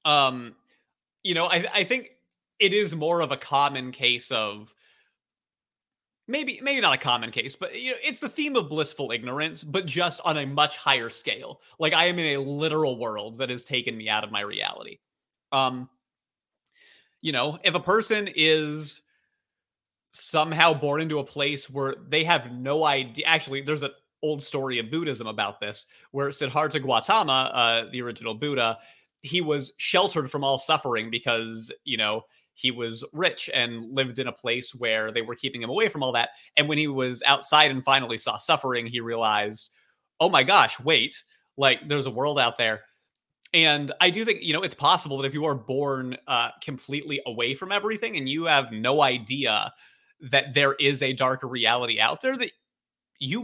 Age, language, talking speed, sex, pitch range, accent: 30-49, English, 185 wpm, male, 125-160 Hz, American